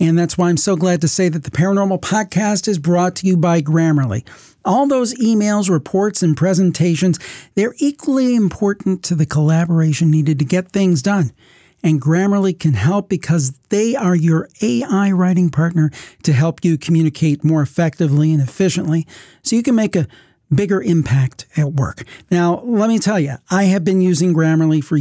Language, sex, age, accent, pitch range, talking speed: English, male, 40-59, American, 155-190 Hz, 180 wpm